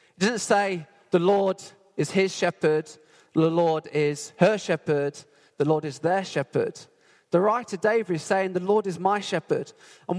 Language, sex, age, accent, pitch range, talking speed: English, male, 20-39, British, 165-210 Hz, 170 wpm